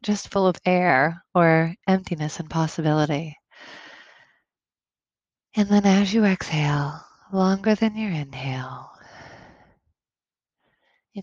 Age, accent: 30-49, American